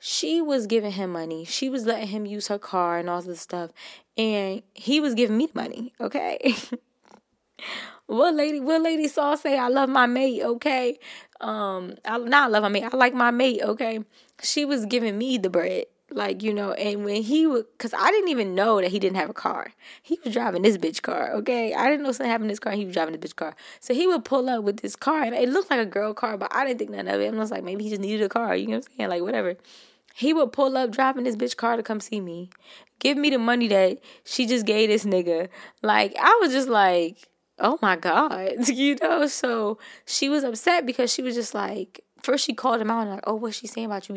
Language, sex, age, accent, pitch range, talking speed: English, female, 20-39, American, 195-255 Hz, 250 wpm